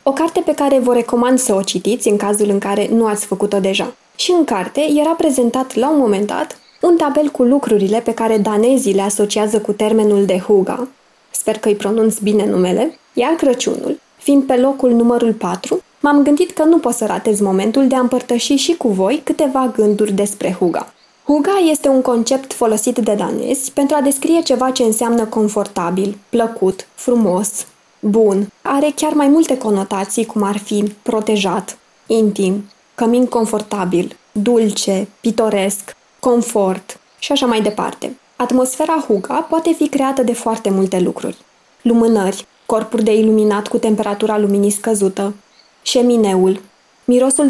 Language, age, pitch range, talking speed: Romanian, 20-39, 205-255 Hz, 160 wpm